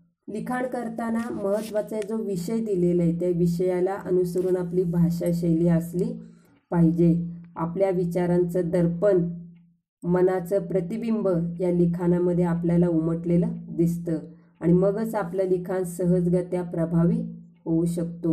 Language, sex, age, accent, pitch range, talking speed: Marathi, female, 30-49, native, 170-200 Hz, 105 wpm